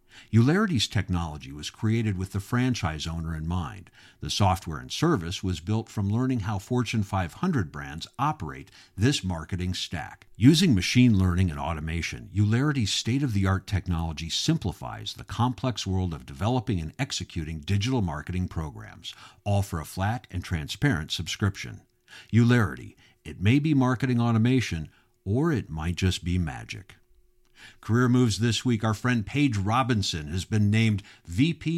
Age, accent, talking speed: 50-69, American, 145 wpm